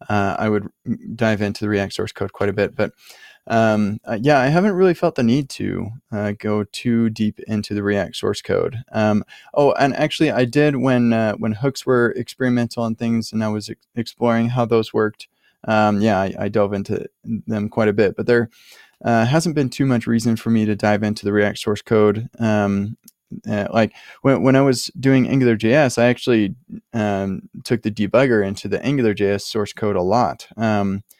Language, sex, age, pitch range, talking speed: English, male, 20-39, 105-125 Hz, 205 wpm